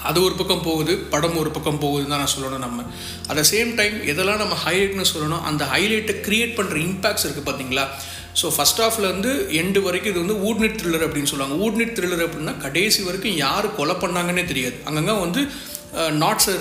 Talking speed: 180 wpm